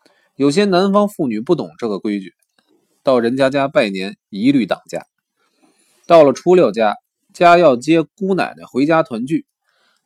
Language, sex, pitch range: Chinese, male, 145-210 Hz